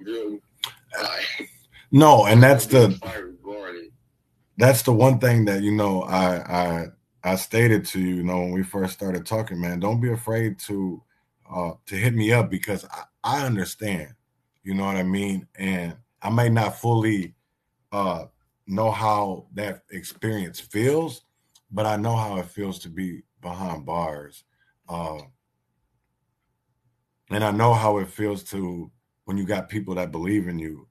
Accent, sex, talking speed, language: American, male, 155 wpm, English